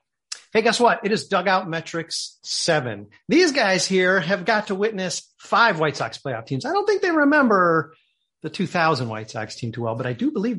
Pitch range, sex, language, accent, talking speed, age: 145-215 Hz, male, English, American, 205 wpm, 40-59